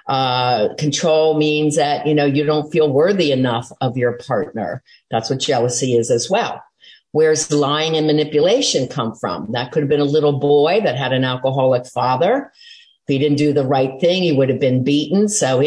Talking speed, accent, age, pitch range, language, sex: 200 wpm, American, 50-69, 135-165 Hz, English, female